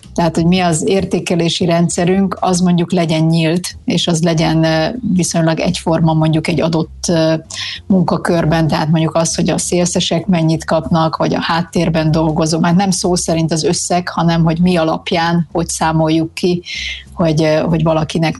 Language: Hungarian